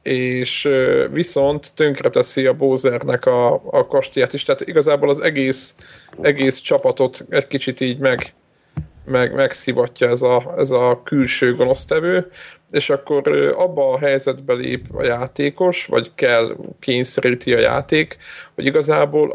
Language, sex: Hungarian, male